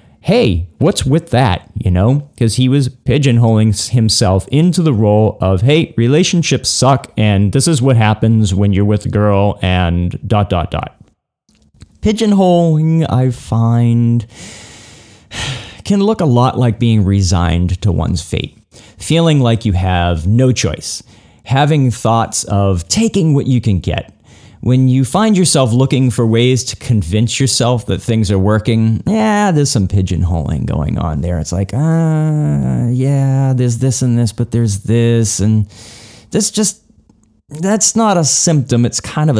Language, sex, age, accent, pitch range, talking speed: English, male, 30-49, American, 100-135 Hz, 155 wpm